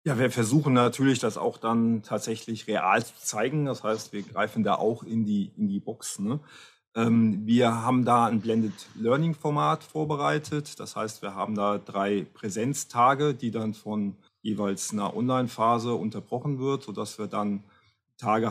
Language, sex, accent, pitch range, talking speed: German, male, German, 110-130 Hz, 160 wpm